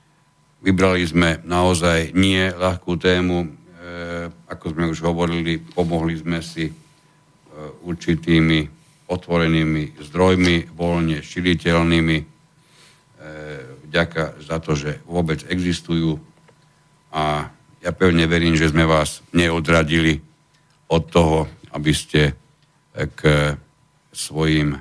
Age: 60-79